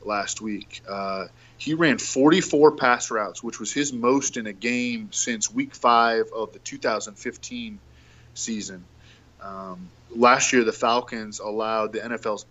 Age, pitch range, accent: 20-39, 110-135 Hz, American